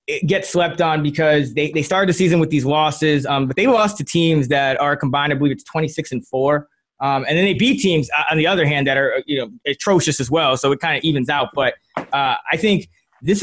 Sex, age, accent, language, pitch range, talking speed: male, 20-39, American, English, 150-180 Hz, 245 wpm